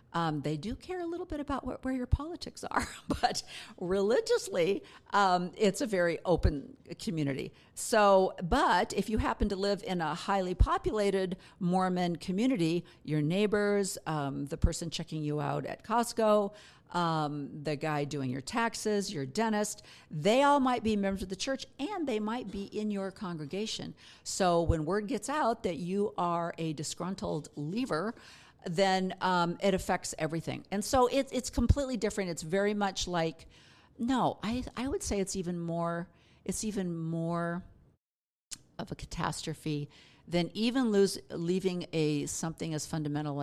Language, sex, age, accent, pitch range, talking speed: English, female, 50-69, American, 160-220 Hz, 165 wpm